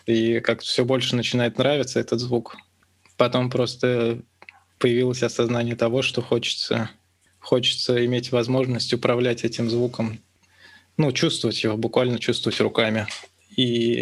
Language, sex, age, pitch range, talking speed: Russian, male, 20-39, 115-125 Hz, 120 wpm